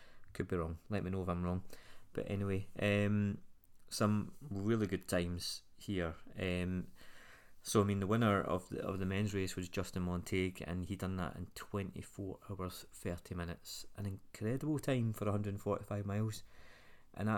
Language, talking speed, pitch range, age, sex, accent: English, 180 wpm, 95-110 Hz, 30-49, male, British